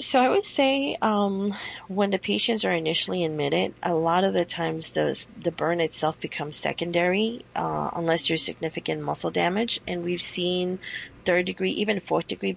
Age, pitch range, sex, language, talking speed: 30-49, 150-175 Hz, female, English, 160 wpm